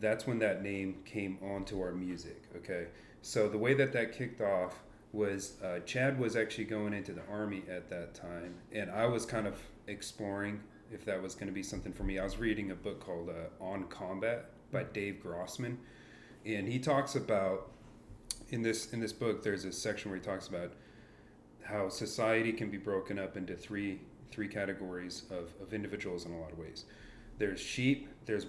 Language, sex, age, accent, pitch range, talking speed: English, male, 30-49, American, 95-110 Hz, 190 wpm